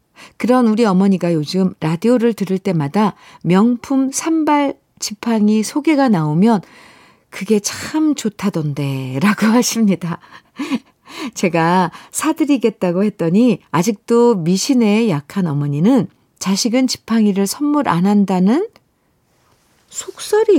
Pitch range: 185-255 Hz